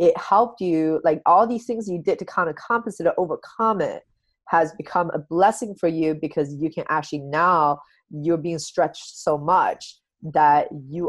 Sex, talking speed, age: female, 185 wpm, 20-39